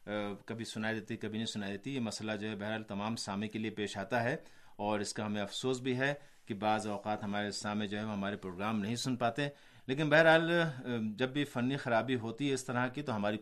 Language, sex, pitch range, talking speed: Urdu, male, 110-145 Hz, 235 wpm